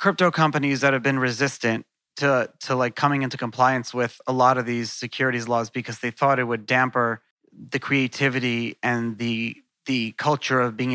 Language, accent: English, American